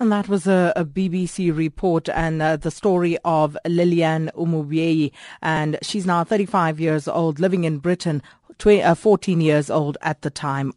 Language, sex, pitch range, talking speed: English, female, 160-200 Hz, 160 wpm